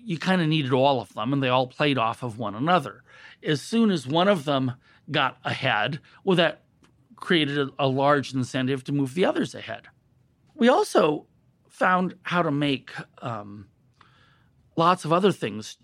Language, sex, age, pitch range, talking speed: English, male, 40-59, 135-195 Hz, 175 wpm